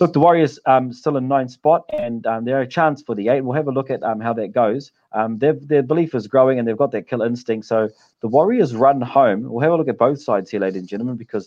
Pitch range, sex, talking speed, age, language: 110-150 Hz, male, 290 wpm, 30-49, English